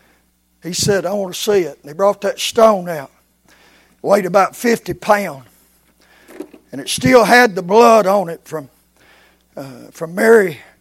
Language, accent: English, American